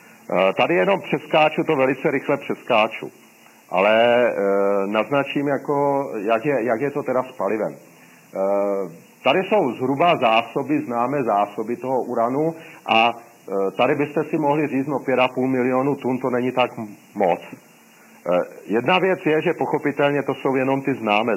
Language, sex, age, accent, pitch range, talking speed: Czech, male, 40-59, native, 115-145 Hz, 150 wpm